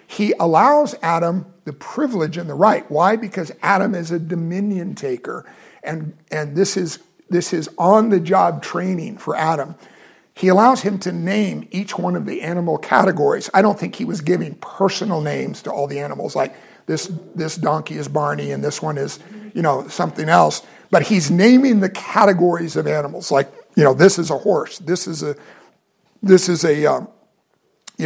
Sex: male